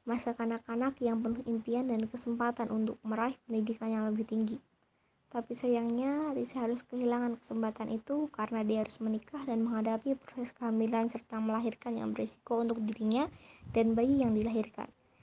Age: 20-39